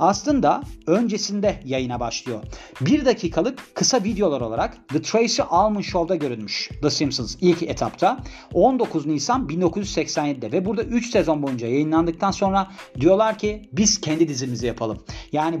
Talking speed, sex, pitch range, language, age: 135 wpm, male, 130-190 Hz, Turkish, 40-59